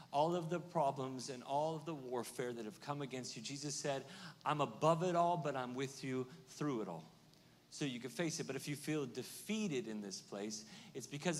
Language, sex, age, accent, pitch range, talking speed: English, male, 40-59, American, 130-170 Hz, 220 wpm